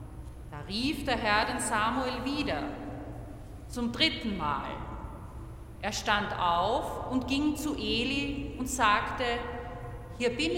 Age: 40-59